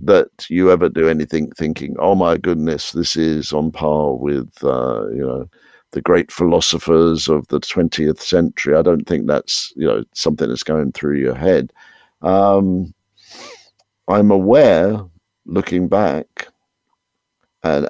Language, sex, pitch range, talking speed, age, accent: English, male, 75-90 Hz, 140 wpm, 50-69, British